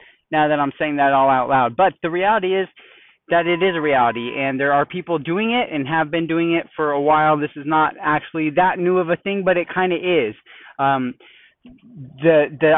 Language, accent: English, American